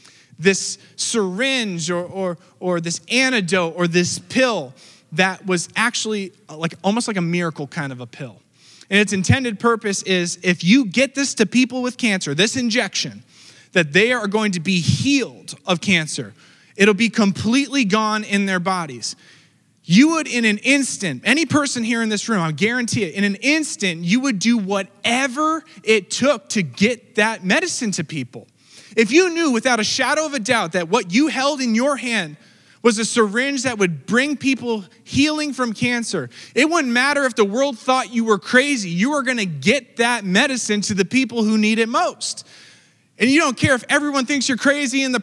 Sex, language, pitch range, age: male, English, 185-260 Hz, 20-39